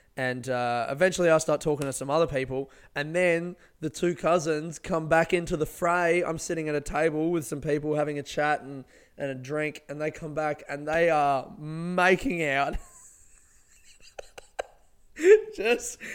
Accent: Australian